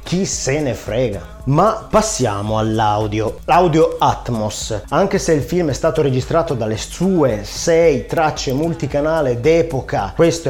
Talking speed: 130 wpm